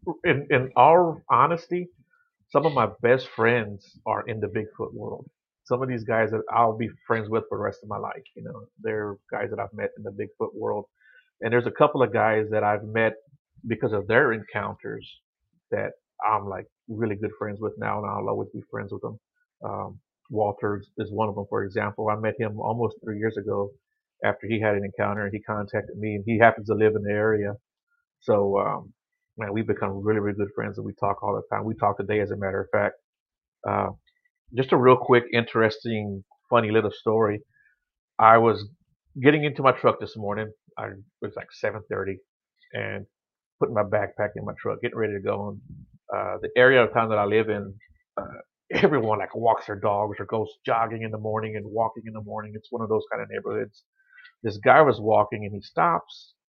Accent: American